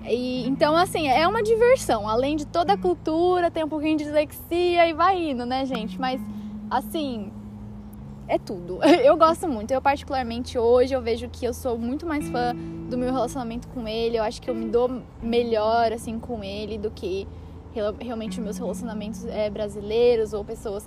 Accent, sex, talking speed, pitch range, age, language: Brazilian, female, 180 wpm, 215-275 Hz, 10-29, Portuguese